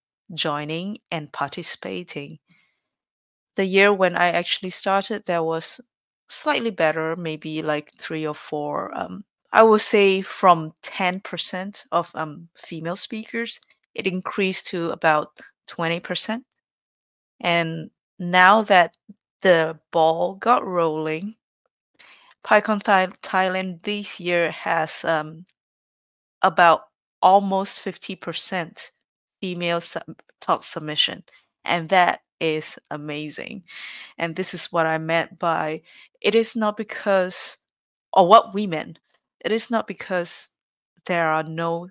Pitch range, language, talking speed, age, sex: 160-200 Hz, English, 115 wpm, 30-49, female